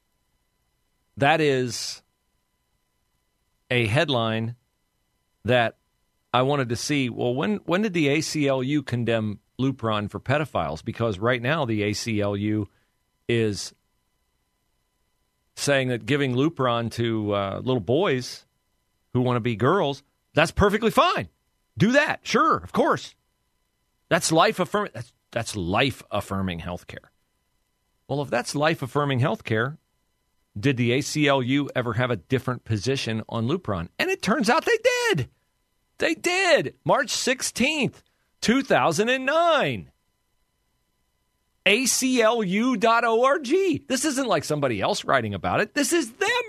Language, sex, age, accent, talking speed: English, male, 40-59, American, 120 wpm